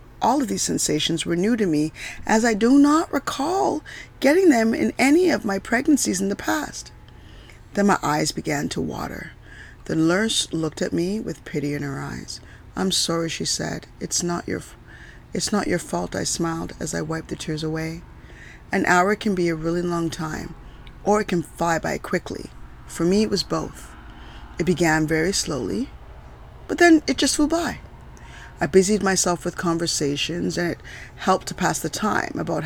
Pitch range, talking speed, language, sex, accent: 155-210 Hz, 180 wpm, English, female, American